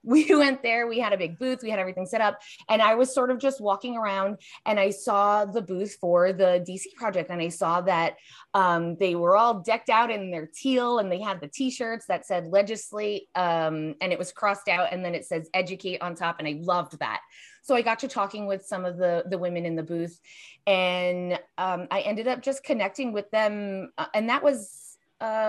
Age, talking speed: 20-39, 225 wpm